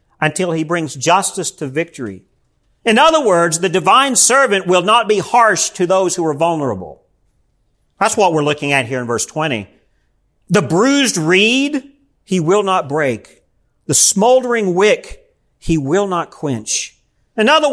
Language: English